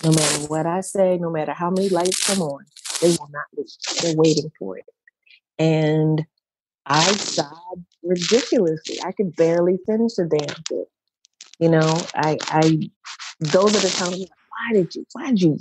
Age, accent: 40-59, American